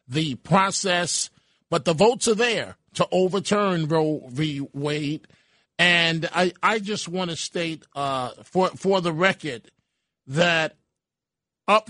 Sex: male